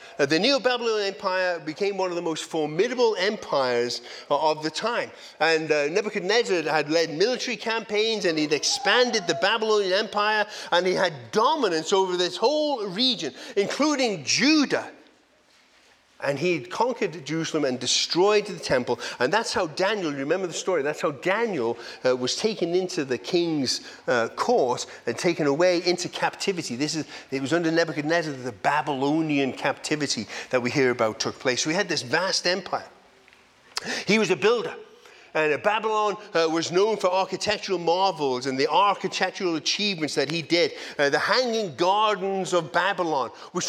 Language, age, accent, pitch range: English, 40-59, British, 155-210 Hz